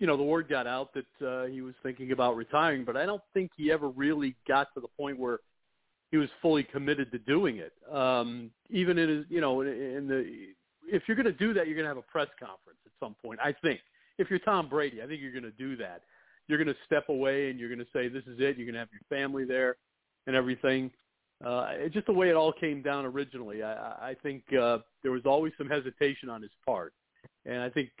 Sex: male